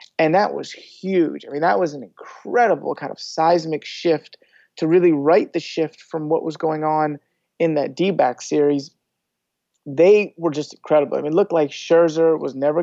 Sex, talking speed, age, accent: male, 185 wpm, 30-49, American